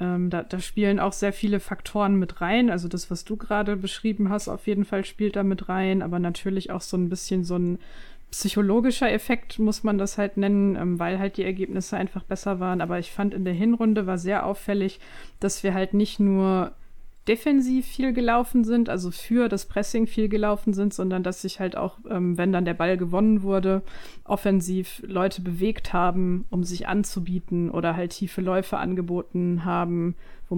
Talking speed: 190 wpm